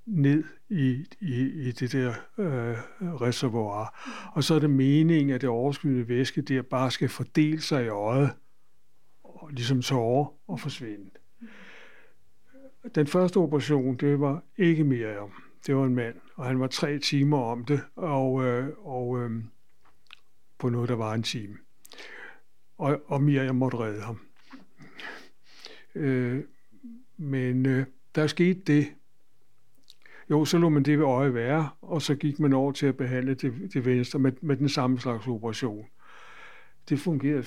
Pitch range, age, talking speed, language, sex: 125-155 Hz, 60-79, 150 wpm, Danish, male